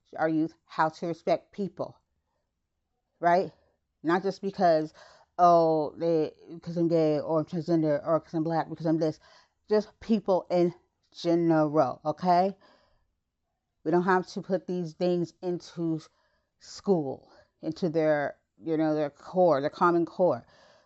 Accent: American